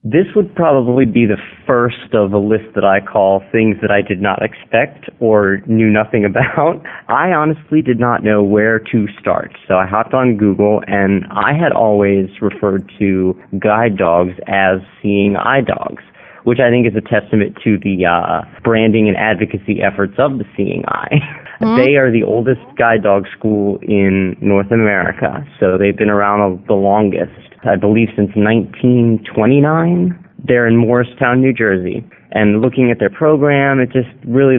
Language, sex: English, male